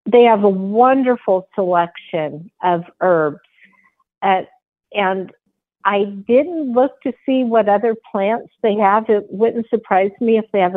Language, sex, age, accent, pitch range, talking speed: English, female, 50-69, American, 180-225 Hz, 145 wpm